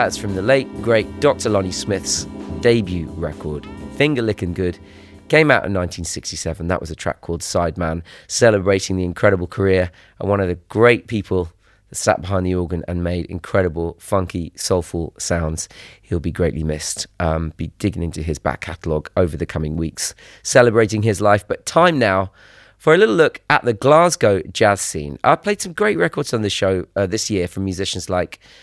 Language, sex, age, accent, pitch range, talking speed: French, male, 30-49, British, 90-120 Hz, 185 wpm